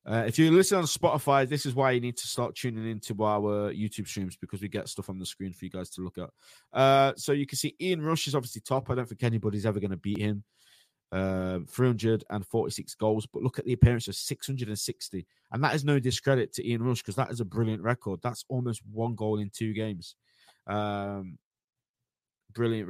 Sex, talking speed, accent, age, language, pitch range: male, 220 wpm, British, 20-39, English, 105-130 Hz